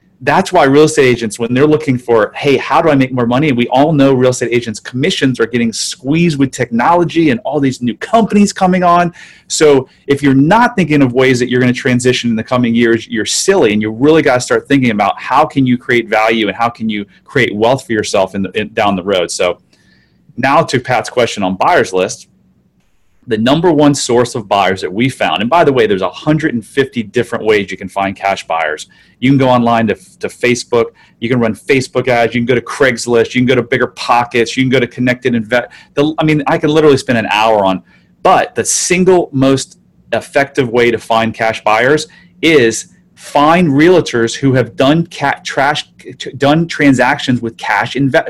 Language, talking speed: English, 210 wpm